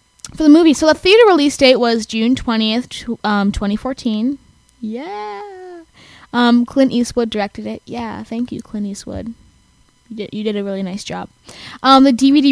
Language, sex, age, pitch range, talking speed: English, female, 10-29, 210-295 Hz, 170 wpm